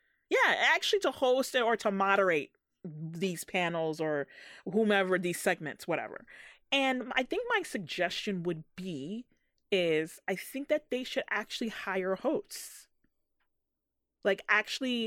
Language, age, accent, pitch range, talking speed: English, 30-49, American, 170-245 Hz, 125 wpm